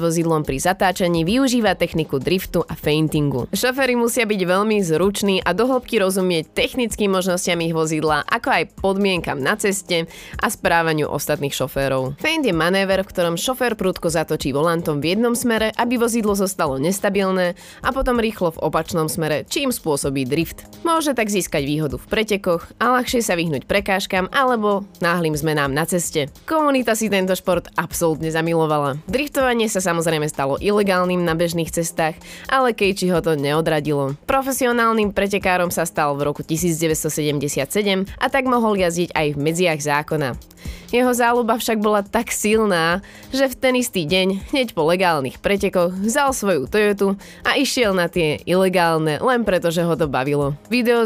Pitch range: 160-215 Hz